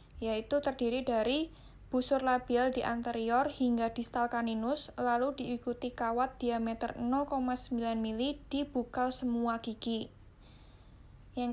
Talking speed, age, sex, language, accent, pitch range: 110 wpm, 10-29, female, Indonesian, native, 225-255 Hz